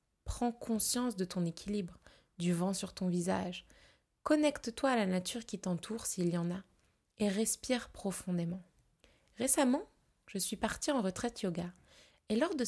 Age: 20-39